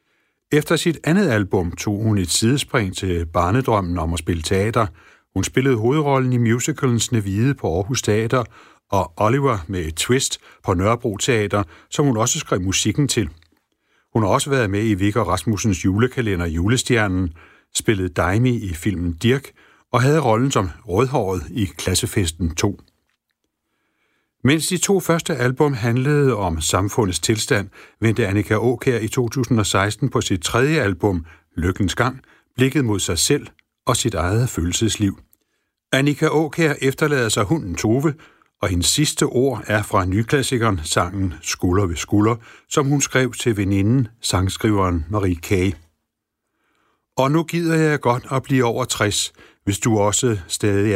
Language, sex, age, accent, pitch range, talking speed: Danish, male, 60-79, native, 95-130 Hz, 150 wpm